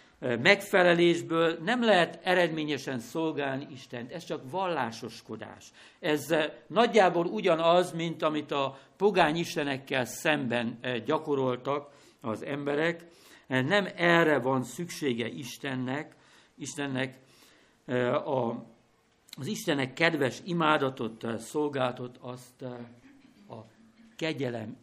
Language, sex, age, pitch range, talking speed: Hungarian, male, 60-79, 130-180 Hz, 85 wpm